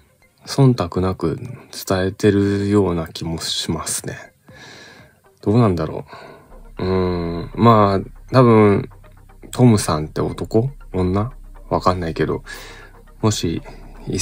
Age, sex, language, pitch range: 20-39, male, Japanese, 85-115 Hz